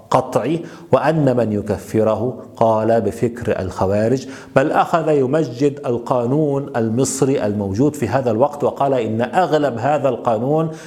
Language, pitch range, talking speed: Arabic, 115-145 Hz, 115 wpm